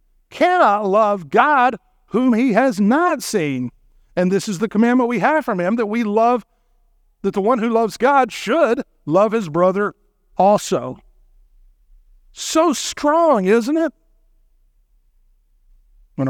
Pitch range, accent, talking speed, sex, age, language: 120-180 Hz, American, 135 wpm, male, 50-69, English